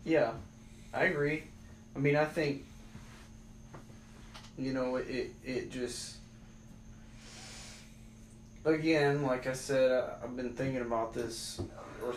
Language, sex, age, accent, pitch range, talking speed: English, male, 20-39, American, 110-135 Hz, 110 wpm